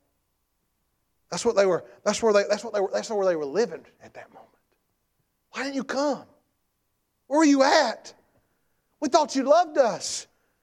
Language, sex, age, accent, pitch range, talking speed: English, male, 40-59, American, 175-255 Hz, 180 wpm